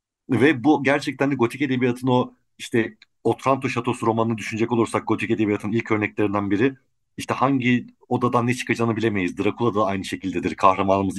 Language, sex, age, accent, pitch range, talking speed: Turkish, male, 50-69, native, 110-135 Hz, 155 wpm